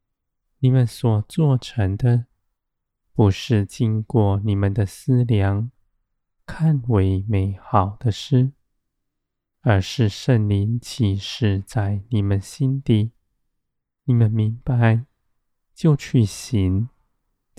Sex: male